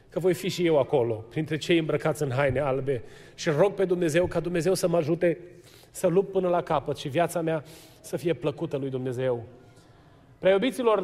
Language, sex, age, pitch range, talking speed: Romanian, male, 30-49, 170-215 Hz, 190 wpm